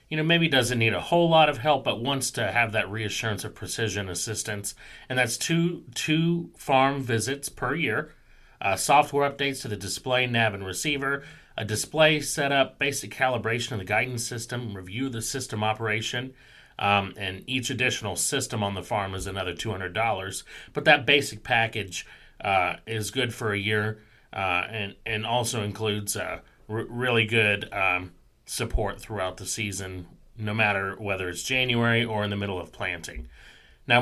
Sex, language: male, English